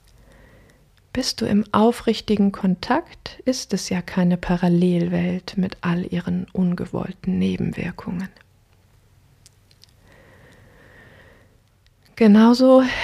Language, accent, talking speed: German, German, 75 wpm